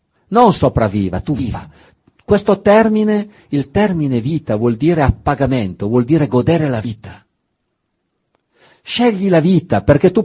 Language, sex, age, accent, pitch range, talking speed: Italian, male, 50-69, native, 100-145 Hz, 130 wpm